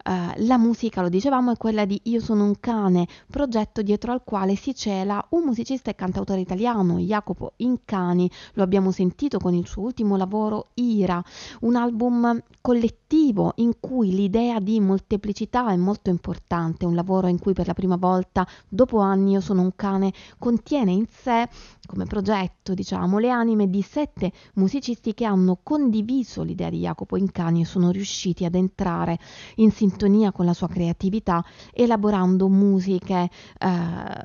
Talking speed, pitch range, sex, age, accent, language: 160 wpm, 175-220 Hz, female, 20-39, native, Italian